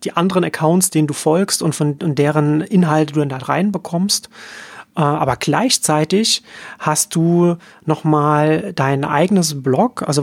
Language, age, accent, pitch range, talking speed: German, 30-49, German, 140-175 Hz, 135 wpm